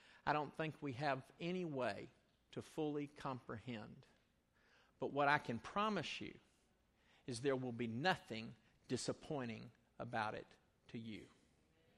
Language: English